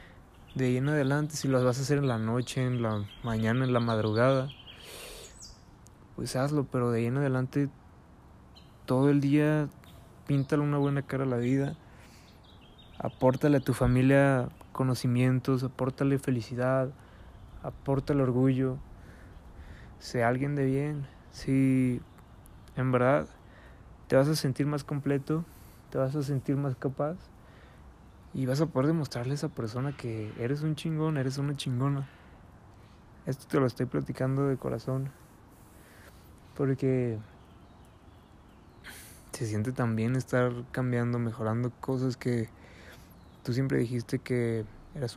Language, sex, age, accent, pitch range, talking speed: Spanish, male, 20-39, Mexican, 110-135 Hz, 135 wpm